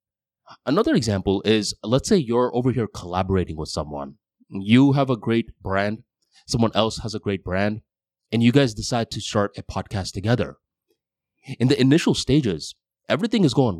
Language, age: English, 20-39